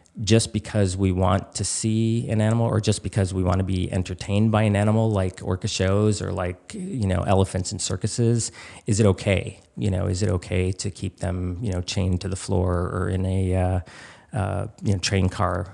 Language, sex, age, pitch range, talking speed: English, male, 40-59, 95-105 Hz, 210 wpm